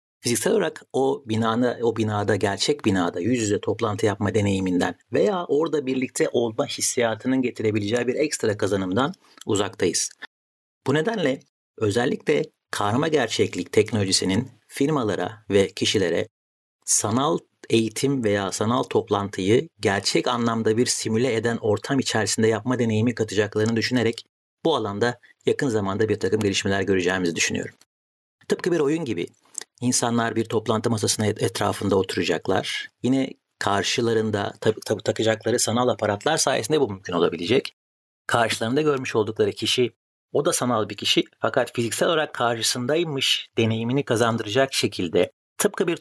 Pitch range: 105-125 Hz